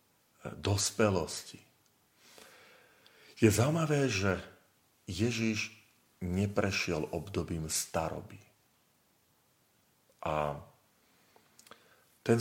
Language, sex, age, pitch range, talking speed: Slovak, male, 40-59, 90-110 Hz, 50 wpm